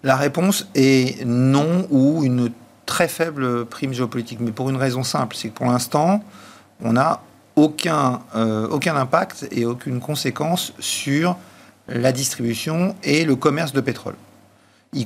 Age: 50-69